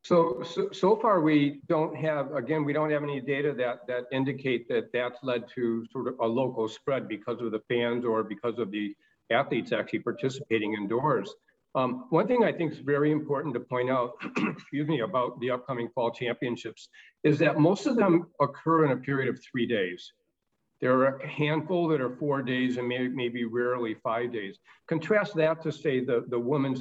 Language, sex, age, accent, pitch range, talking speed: English, male, 50-69, American, 115-145 Hz, 190 wpm